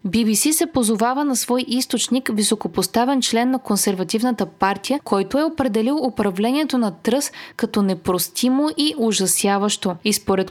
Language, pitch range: Bulgarian, 205-265 Hz